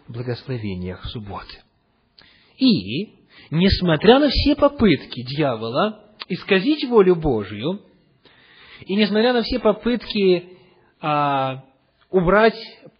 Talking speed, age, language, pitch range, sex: 85 wpm, 40-59, English, 130-200 Hz, male